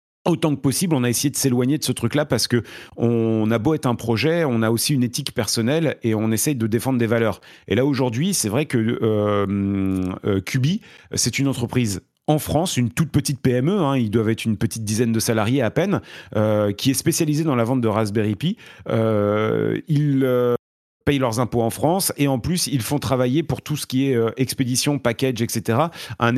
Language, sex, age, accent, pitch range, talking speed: French, male, 40-59, French, 110-140 Hz, 215 wpm